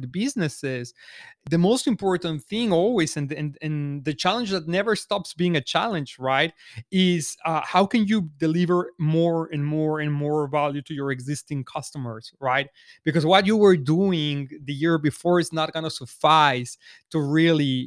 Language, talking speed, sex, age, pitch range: English, 170 wpm, male, 30-49, 140-165 Hz